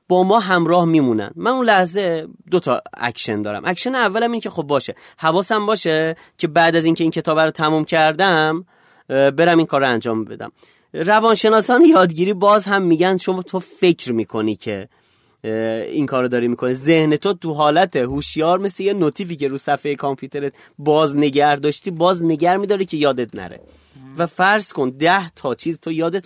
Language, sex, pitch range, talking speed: Persian, male, 135-185 Hz, 180 wpm